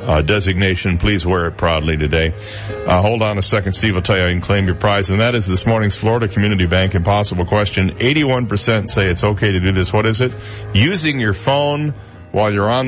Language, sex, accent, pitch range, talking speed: English, male, American, 95-120 Hz, 220 wpm